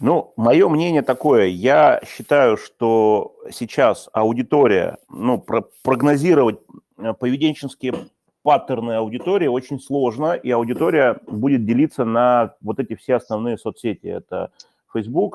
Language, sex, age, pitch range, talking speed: Russian, male, 30-49, 105-145 Hz, 115 wpm